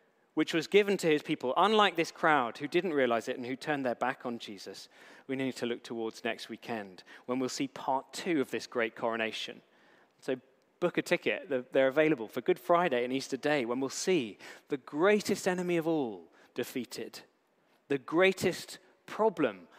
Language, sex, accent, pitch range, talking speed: English, male, British, 125-155 Hz, 180 wpm